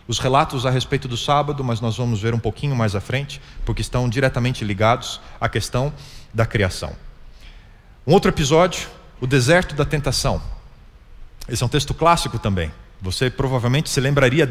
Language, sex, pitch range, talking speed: Portuguese, male, 105-140 Hz, 165 wpm